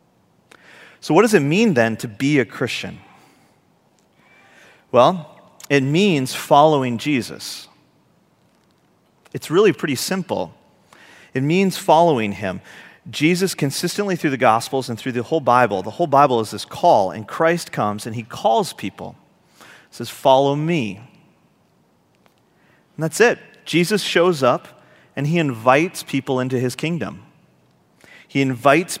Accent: American